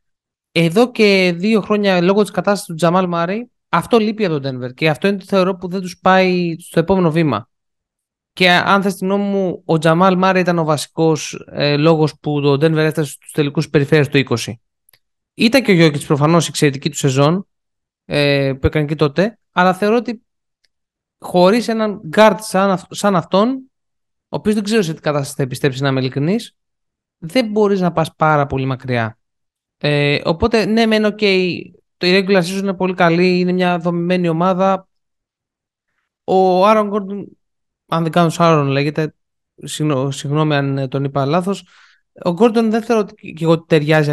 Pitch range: 155-205 Hz